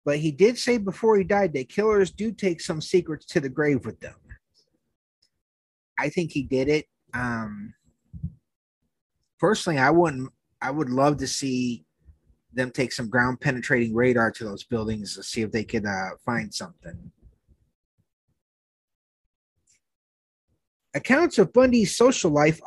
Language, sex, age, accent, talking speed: English, male, 30-49, American, 140 wpm